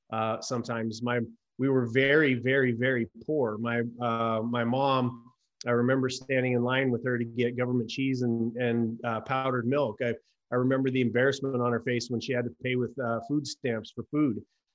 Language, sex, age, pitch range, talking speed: English, male, 30-49, 120-140 Hz, 195 wpm